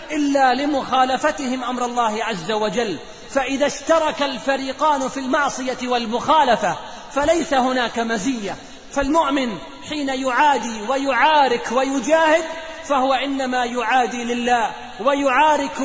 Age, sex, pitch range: 30-49, male, 245-280 Hz